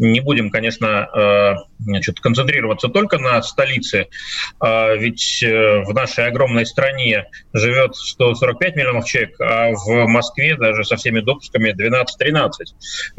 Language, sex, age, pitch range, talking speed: Russian, male, 30-49, 120-160 Hz, 115 wpm